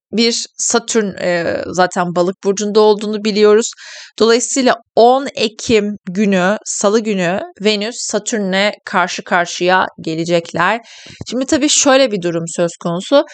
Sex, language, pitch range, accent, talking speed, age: female, Turkish, 175-210 Hz, native, 110 wpm, 30-49